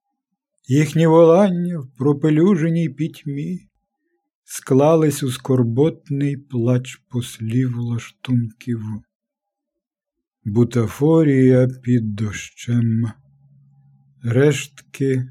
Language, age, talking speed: Ukrainian, 50-69, 60 wpm